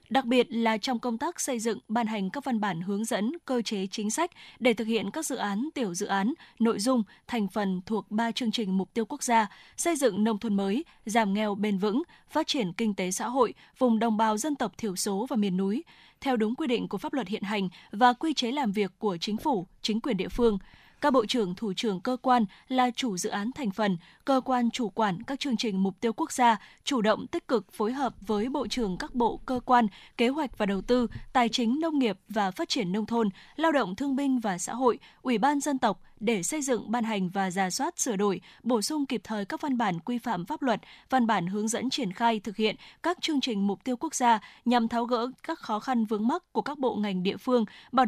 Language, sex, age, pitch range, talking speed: Vietnamese, female, 10-29, 210-255 Hz, 250 wpm